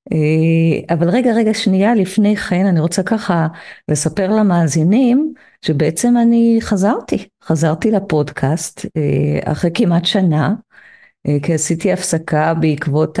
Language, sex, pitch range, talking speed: Hebrew, female, 155-200 Hz, 105 wpm